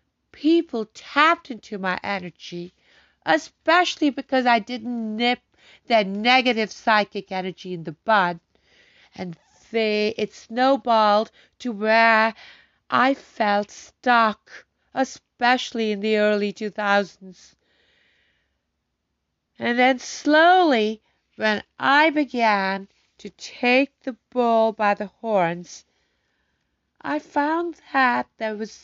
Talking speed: 100 wpm